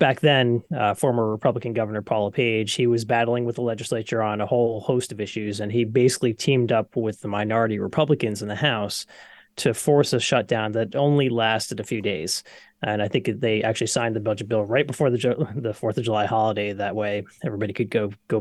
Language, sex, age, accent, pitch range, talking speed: English, male, 30-49, American, 110-135 Hz, 215 wpm